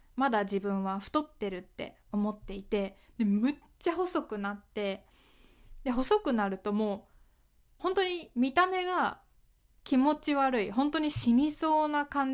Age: 20-39